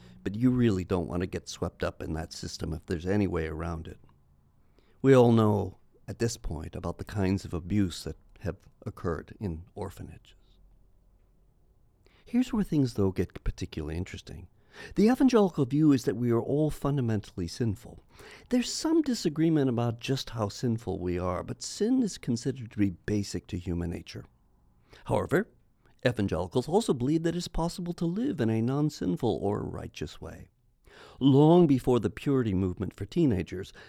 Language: English